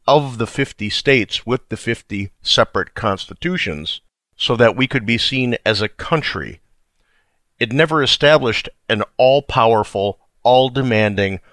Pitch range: 100-130 Hz